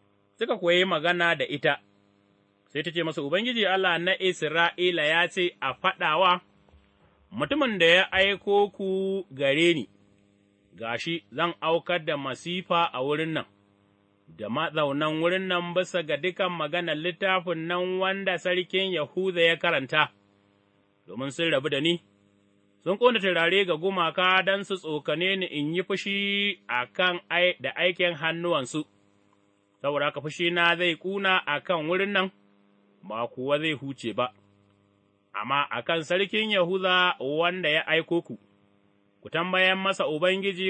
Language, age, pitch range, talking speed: English, 30-49, 130-185 Hz, 115 wpm